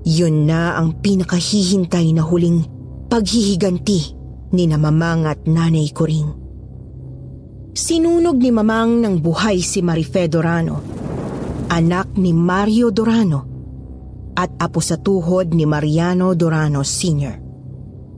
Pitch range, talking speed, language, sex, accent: 150-200 Hz, 110 wpm, Filipino, female, native